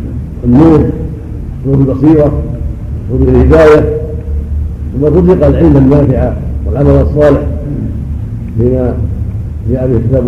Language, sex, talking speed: Arabic, male, 90 wpm